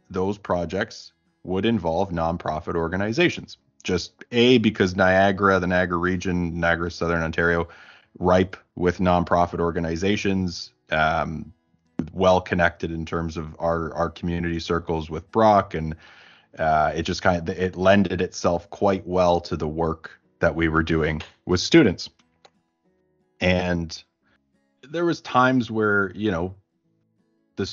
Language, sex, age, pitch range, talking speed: English, male, 20-39, 80-95 Hz, 130 wpm